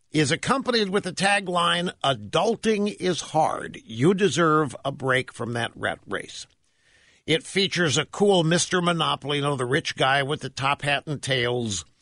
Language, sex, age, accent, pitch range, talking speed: English, male, 60-79, American, 130-180 Hz, 165 wpm